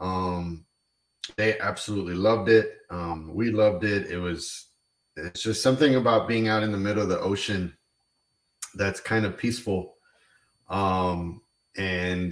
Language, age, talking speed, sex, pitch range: English, 20-39, 140 wpm, male, 90-105 Hz